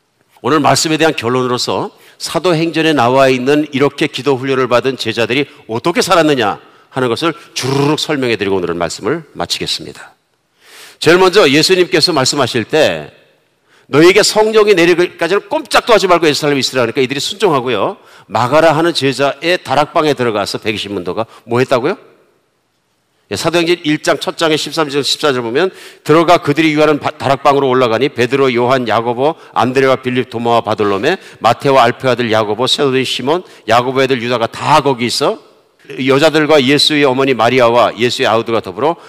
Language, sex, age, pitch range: Korean, male, 50-69, 125-165 Hz